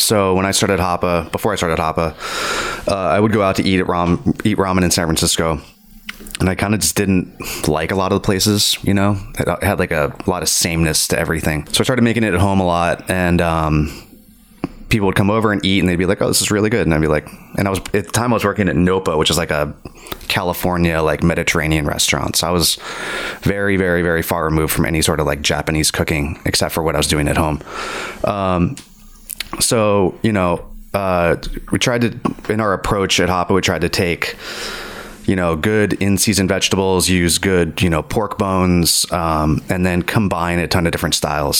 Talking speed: 225 wpm